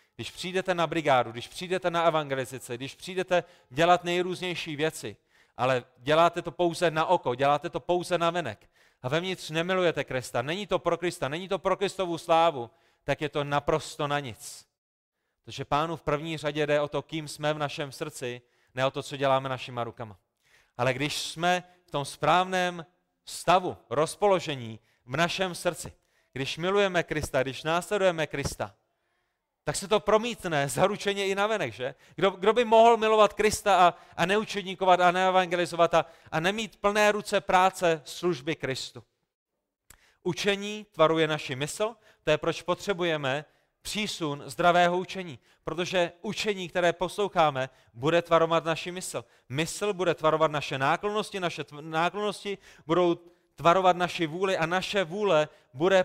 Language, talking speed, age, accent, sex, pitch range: Czech, 150 wpm, 30-49, native, male, 145-185 Hz